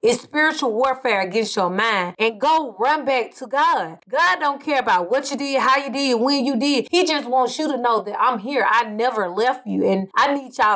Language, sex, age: English, female, 20-39